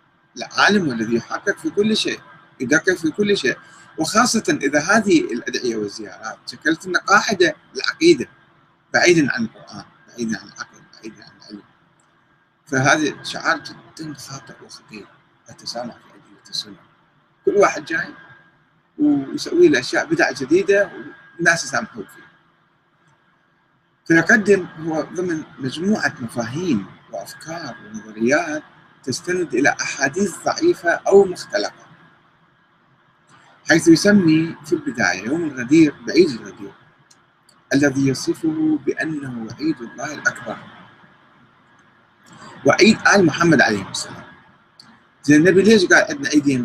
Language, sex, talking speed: Arabic, male, 110 wpm